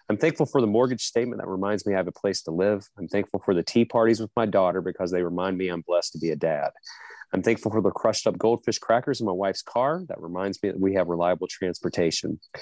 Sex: male